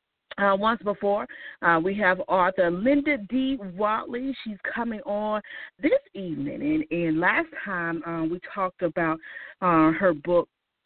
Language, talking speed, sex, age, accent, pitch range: English, 150 wpm, female, 40-59, American, 160-240 Hz